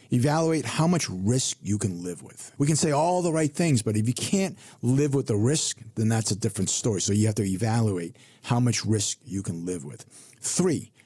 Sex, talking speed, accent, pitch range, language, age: male, 225 wpm, American, 105-135 Hz, English, 50-69